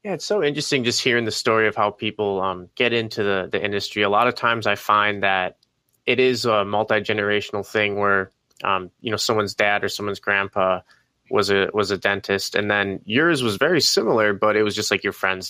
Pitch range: 100-110 Hz